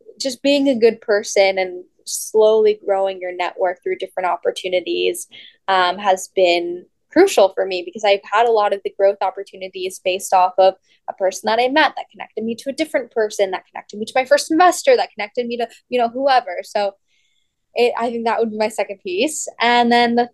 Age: 10-29